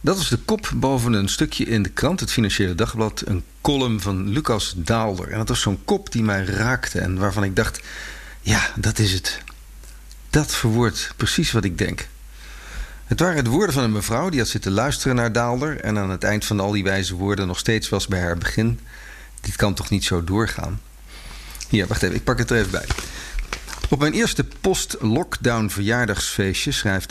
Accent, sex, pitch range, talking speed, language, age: Dutch, male, 95-120 Hz, 195 wpm, Dutch, 50-69